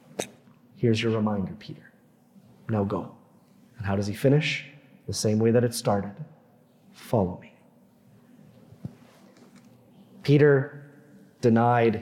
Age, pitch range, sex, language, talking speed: 30-49, 120-145 Hz, male, English, 105 wpm